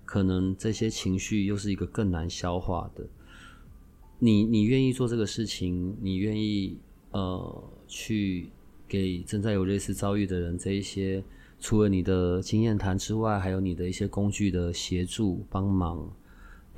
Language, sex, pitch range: Chinese, male, 90-105 Hz